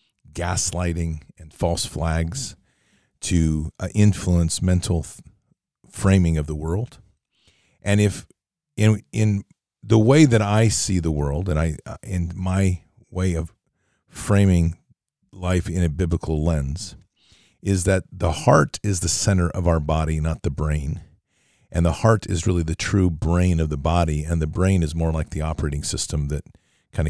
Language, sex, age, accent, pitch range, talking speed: English, male, 40-59, American, 80-100 Hz, 155 wpm